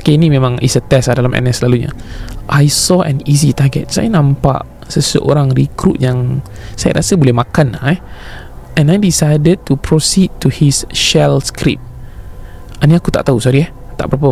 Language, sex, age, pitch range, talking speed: Malay, male, 20-39, 125-165 Hz, 175 wpm